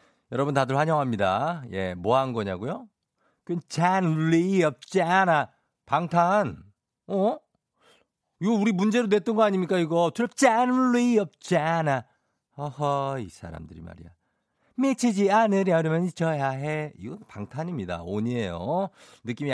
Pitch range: 105-155 Hz